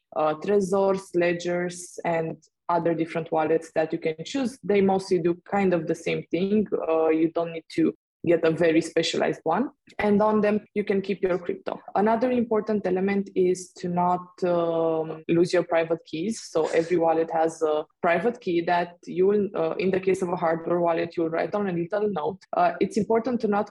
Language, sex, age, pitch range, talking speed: English, female, 20-39, 170-215 Hz, 195 wpm